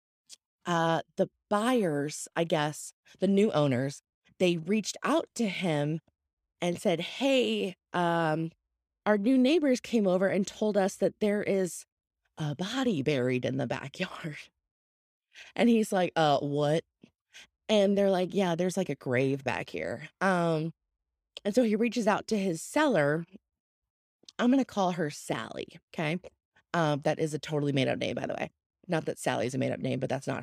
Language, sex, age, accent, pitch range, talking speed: English, female, 20-39, American, 155-230 Hz, 170 wpm